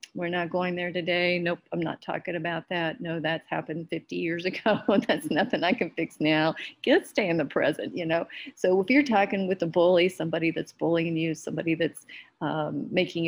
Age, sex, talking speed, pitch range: 40-59, female, 205 wpm, 165-190 Hz